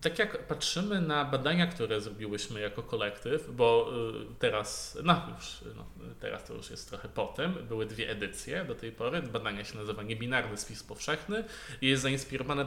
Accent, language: native, Polish